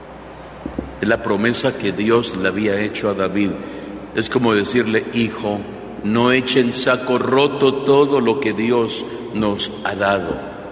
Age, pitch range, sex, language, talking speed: 50-69, 100-130 Hz, male, Spanish, 135 wpm